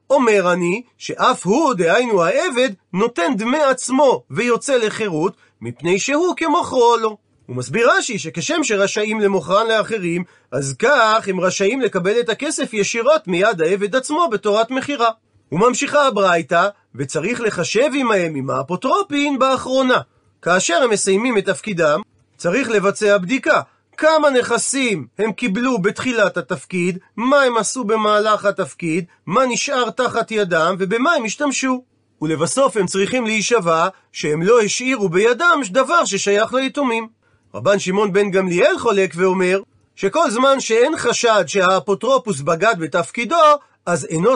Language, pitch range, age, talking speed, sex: Hebrew, 185-260 Hz, 40-59, 130 wpm, male